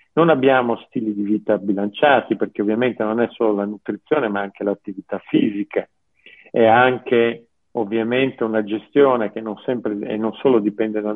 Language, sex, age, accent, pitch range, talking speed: Italian, male, 50-69, native, 105-125 Hz, 150 wpm